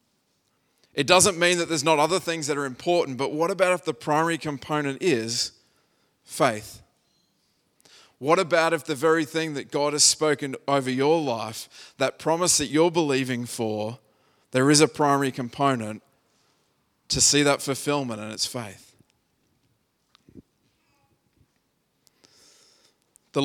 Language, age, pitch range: English, 20-39, 120-150 Hz